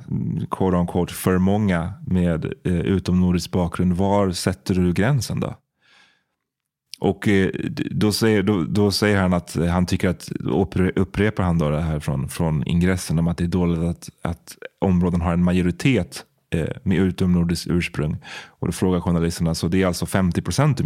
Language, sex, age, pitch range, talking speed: Swedish, male, 30-49, 85-100 Hz, 165 wpm